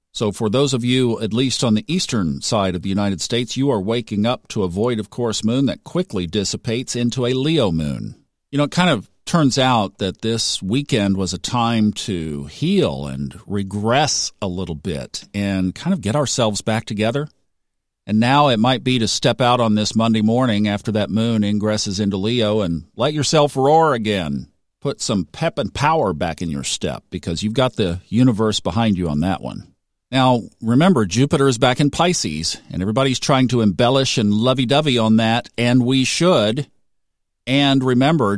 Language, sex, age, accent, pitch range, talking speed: English, male, 50-69, American, 100-130 Hz, 190 wpm